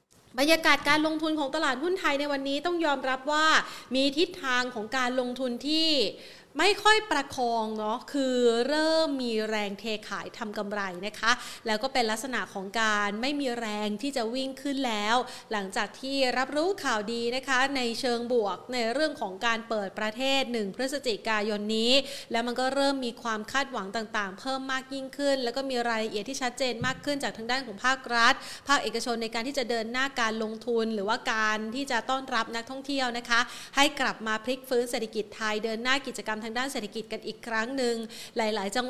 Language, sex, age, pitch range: Thai, female, 30-49, 220-270 Hz